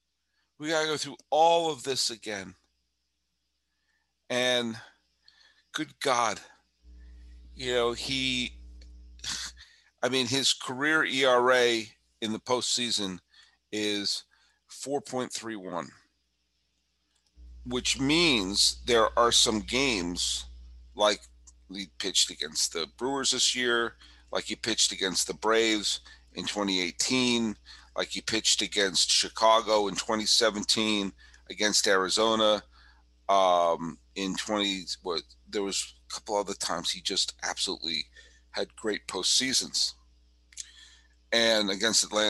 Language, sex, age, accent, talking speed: English, male, 50-69, American, 105 wpm